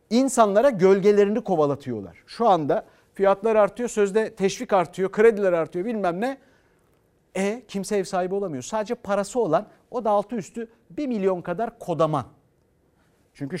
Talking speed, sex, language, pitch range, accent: 135 wpm, male, Turkish, 160-225 Hz, native